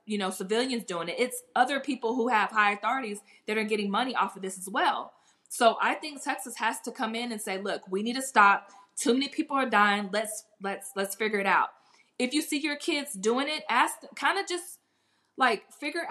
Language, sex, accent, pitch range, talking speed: English, female, American, 210-270 Hz, 225 wpm